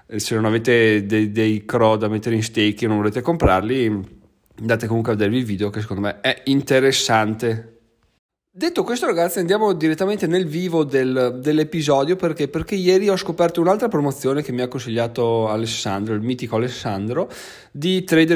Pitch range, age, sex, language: 115-160 Hz, 30-49, male, Italian